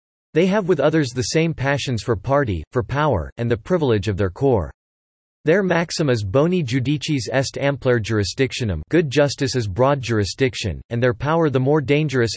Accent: American